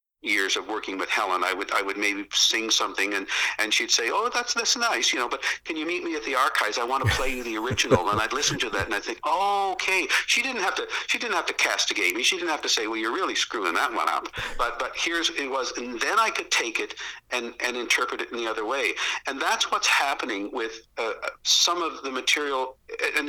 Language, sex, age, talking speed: English, male, 50-69, 255 wpm